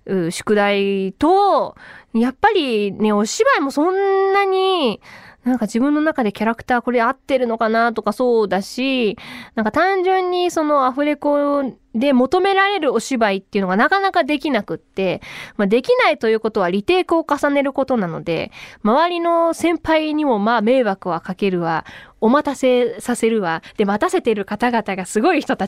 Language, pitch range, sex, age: Japanese, 220-345 Hz, female, 20-39